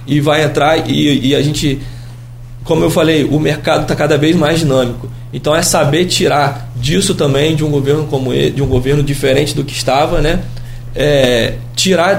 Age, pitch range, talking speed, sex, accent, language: 20-39, 120-150 Hz, 180 wpm, male, Brazilian, Portuguese